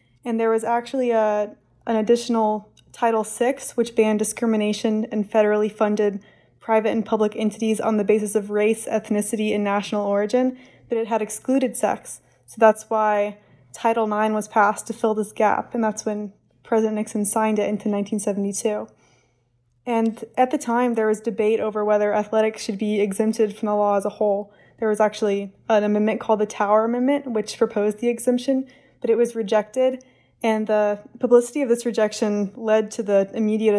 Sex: female